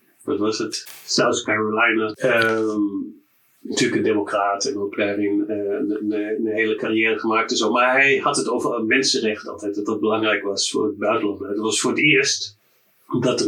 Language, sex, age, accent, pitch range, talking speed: Dutch, male, 30-49, Dutch, 105-135 Hz, 175 wpm